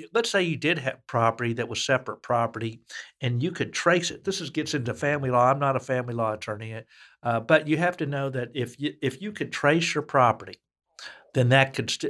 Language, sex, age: English, male, 60-79